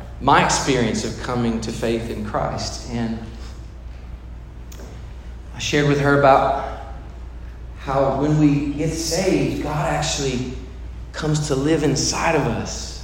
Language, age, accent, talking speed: English, 40-59, American, 125 wpm